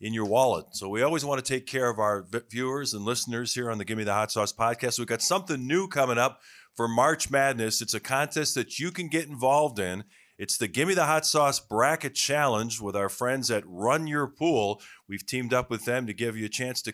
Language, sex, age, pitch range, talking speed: English, male, 40-59, 110-145 Hz, 235 wpm